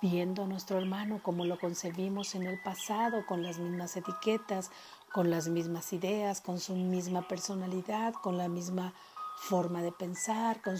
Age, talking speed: 50-69, 160 wpm